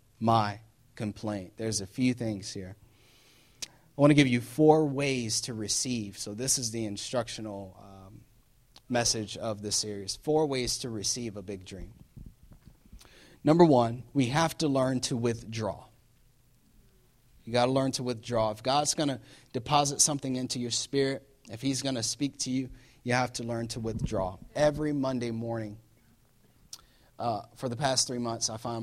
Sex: male